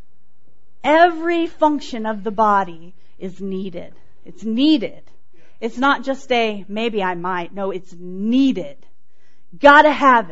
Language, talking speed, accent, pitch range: English, 120 wpm, American, 190-260 Hz